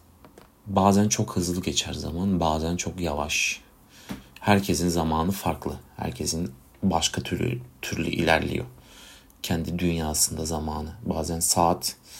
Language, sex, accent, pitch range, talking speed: Turkish, male, native, 80-95 Hz, 105 wpm